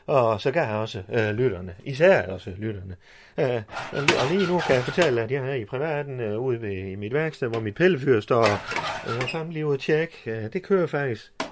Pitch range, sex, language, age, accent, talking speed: 115-170 Hz, male, Danish, 30-49, native, 215 wpm